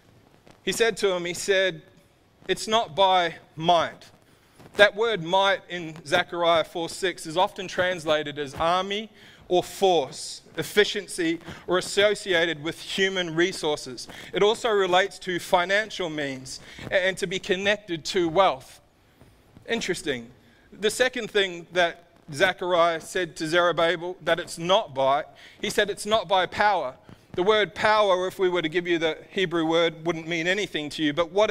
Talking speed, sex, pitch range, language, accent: 150 wpm, male, 170-200 Hz, English, Australian